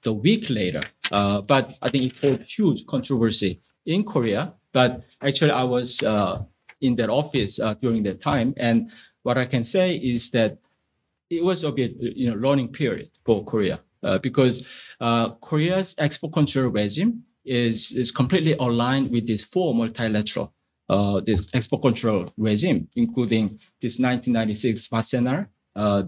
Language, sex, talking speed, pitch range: English, male, 155 wpm, 115-145 Hz